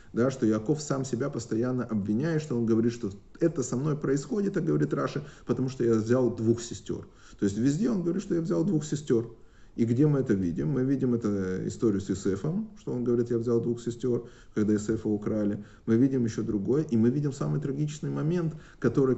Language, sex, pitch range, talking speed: Russian, male, 100-130 Hz, 205 wpm